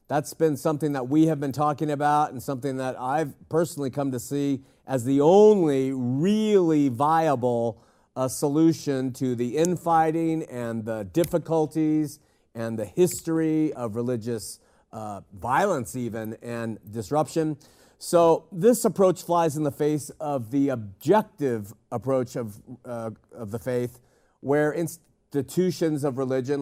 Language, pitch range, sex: Italian, 125-155 Hz, male